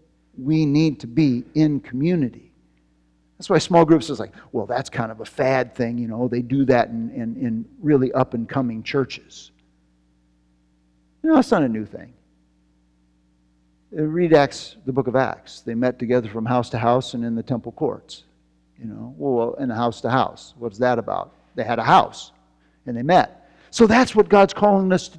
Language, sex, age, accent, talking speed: English, male, 50-69, American, 195 wpm